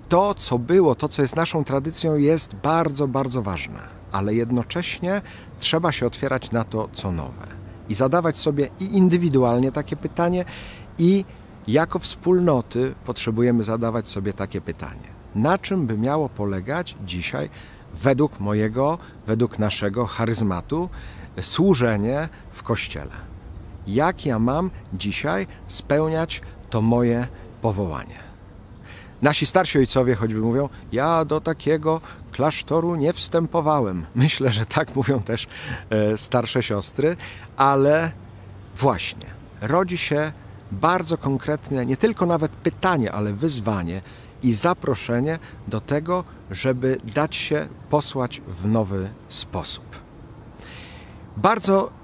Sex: male